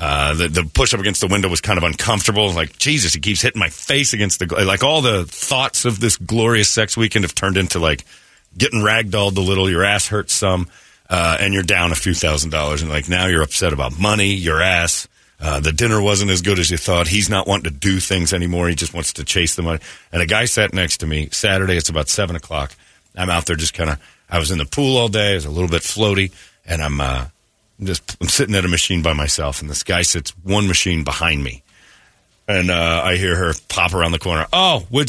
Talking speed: 250 wpm